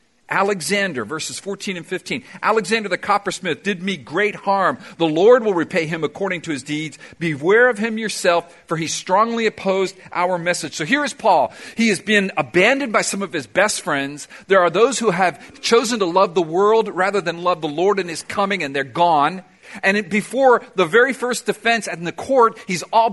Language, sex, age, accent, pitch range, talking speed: English, male, 50-69, American, 155-210 Hz, 200 wpm